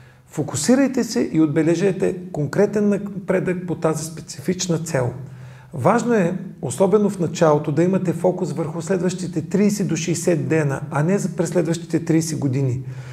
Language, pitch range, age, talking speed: Bulgarian, 150-185 Hz, 40-59, 135 wpm